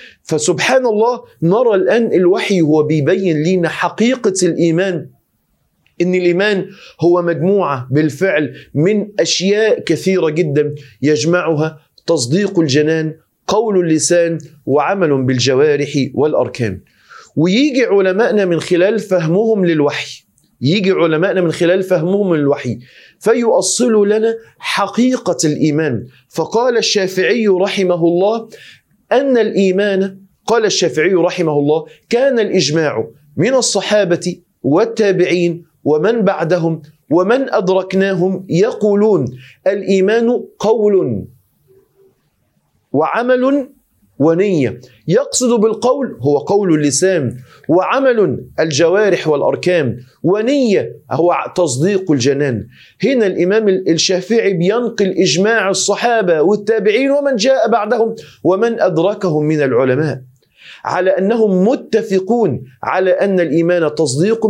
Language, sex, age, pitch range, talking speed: Arabic, male, 40-59, 155-210 Hz, 95 wpm